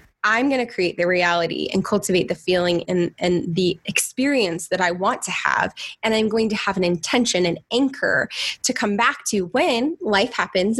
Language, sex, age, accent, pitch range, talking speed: English, female, 20-39, American, 190-245 Hz, 195 wpm